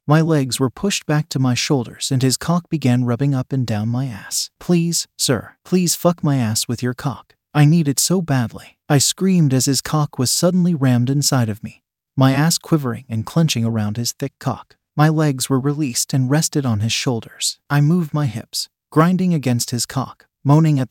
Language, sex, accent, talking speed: English, male, American, 205 wpm